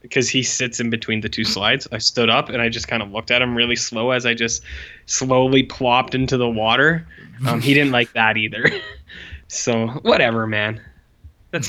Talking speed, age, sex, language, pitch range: 200 wpm, 20-39, male, English, 110-135 Hz